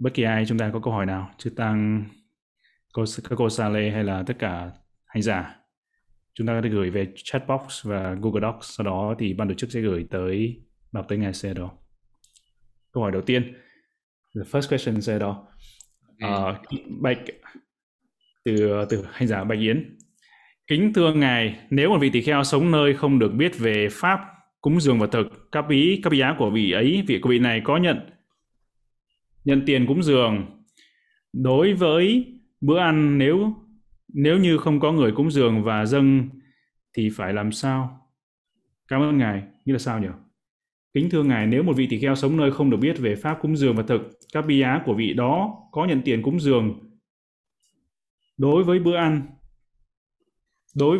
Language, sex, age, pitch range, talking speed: Vietnamese, male, 20-39, 110-150 Hz, 185 wpm